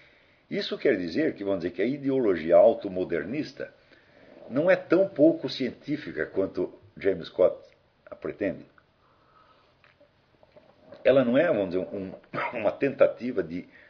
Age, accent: 60-79, Brazilian